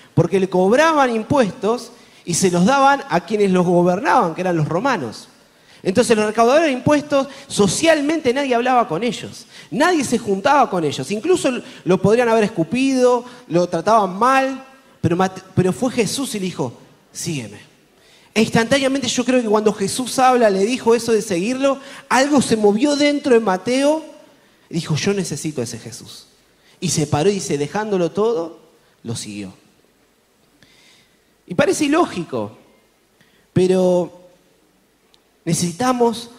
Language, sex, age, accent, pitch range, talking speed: Spanish, male, 30-49, Argentinian, 175-255 Hz, 140 wpm